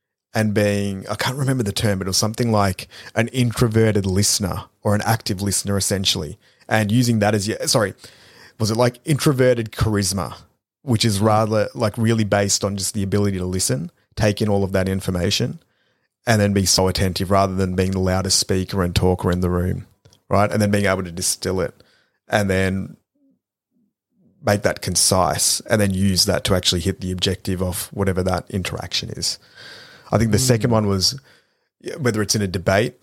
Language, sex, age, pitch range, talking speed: English, male, 30-49, 95-115 Hz, 185 wpm